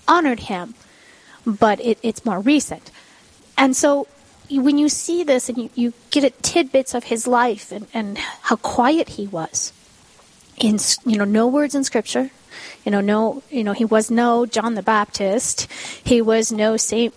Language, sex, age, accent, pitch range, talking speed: English, female, 30-49, American, 220-270 Hz, 175 wpm